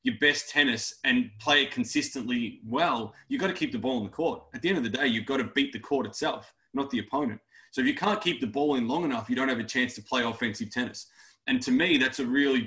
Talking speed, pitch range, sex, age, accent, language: 275 wpm, 120-205 Hz, male, 20-39, Australian, English